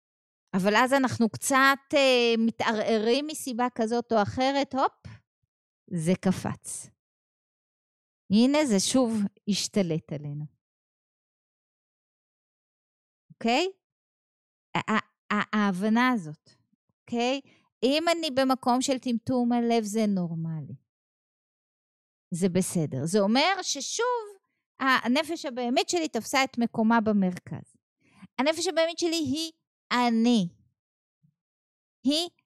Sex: female